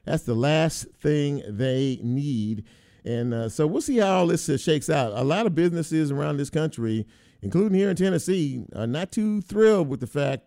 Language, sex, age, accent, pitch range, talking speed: English, male, 50-69, American, 115-150 Hz, 200 wpm